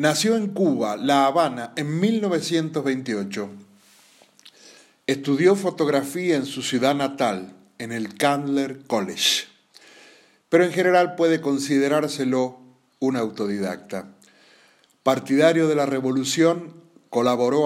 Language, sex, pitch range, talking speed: Spanish, male, 125-155 Hz, 100 wpm